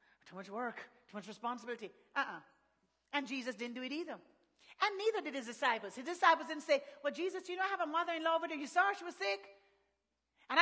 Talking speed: 210 wpm